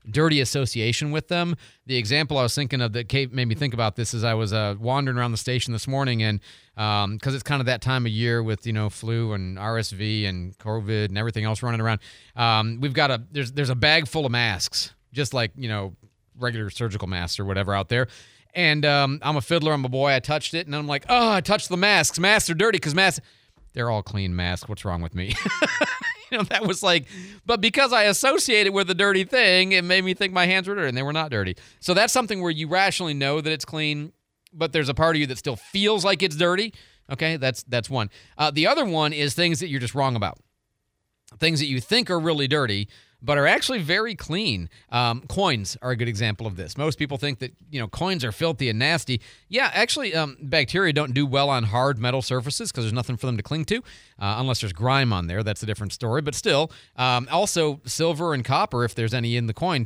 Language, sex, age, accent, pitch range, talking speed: English, male, 40-59, American, 115-165 Hz, 240 wpm